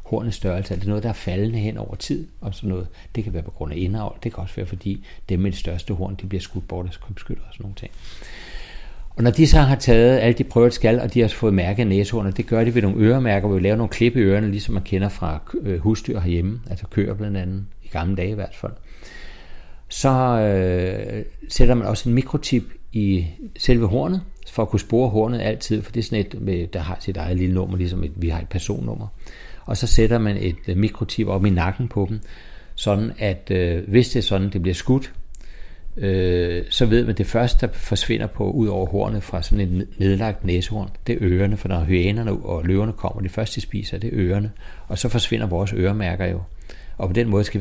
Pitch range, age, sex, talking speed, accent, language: 90-110 Hz, 60-79, male, 235 wpm, native, Danish